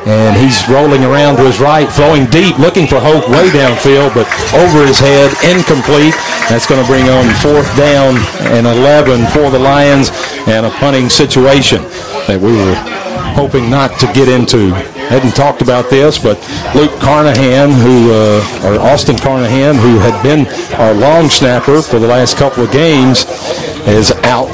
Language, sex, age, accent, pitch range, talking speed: English, male, 50-69, American, 120-145 Hz, 170 wpm